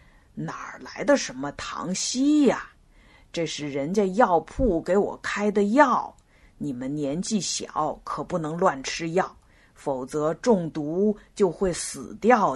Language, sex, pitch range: Chinese, female, 145-230 Hz